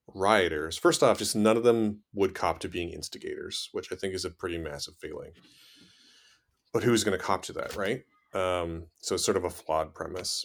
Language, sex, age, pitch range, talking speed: English, male, 30-49, 90-115 Hz, 200 wpm